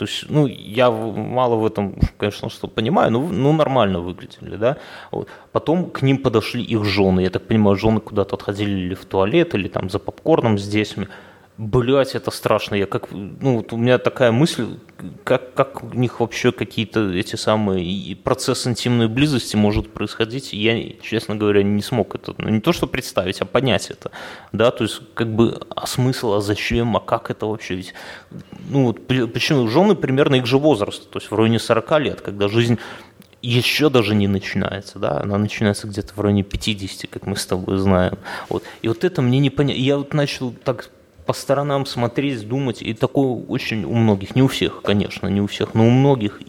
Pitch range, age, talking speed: 105-130 Hz, 20-39, 195 wpm